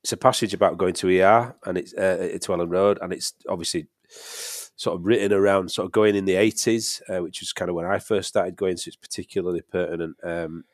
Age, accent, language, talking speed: 30-49, British, English, 235 wpm